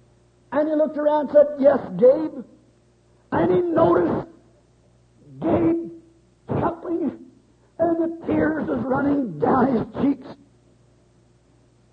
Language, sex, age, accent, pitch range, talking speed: English, male, 50-69, American, 250-325 Hz, 105 wpm